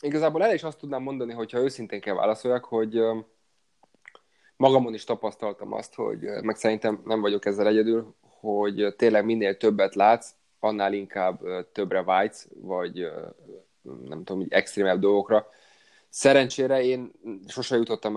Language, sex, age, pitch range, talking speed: Hungarian, male, 20-39, 100-115 Hz, 130 wpm